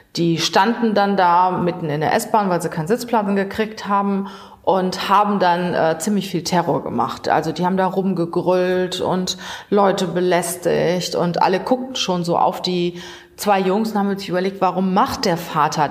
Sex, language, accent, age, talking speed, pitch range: female, German, German, 30-49, 175 wpm, 155-200 Hz